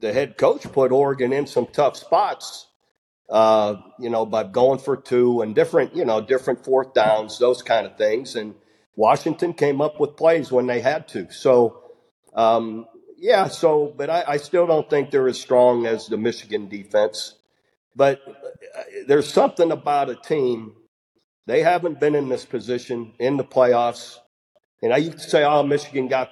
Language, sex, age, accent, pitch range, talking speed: English, male, 50-69, American, 120-145 Hz, 175 wpm